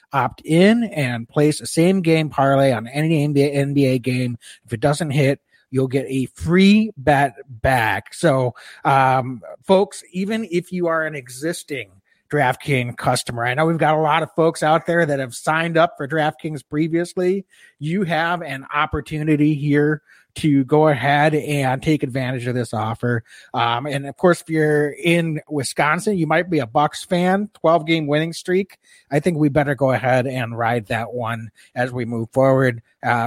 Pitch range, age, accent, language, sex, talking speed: 130-165 Hz, 30-49, American, English, male, 175 wpm